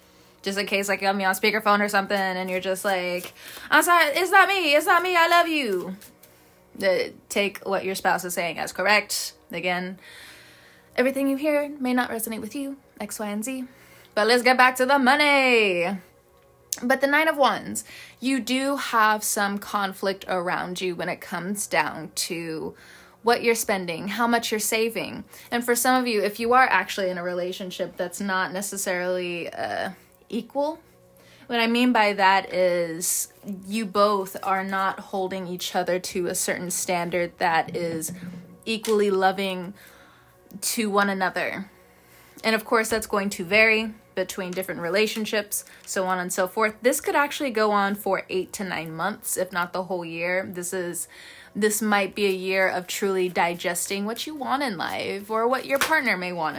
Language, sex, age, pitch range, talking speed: English, female, 20-39, 180-230 Hz, 180 wpm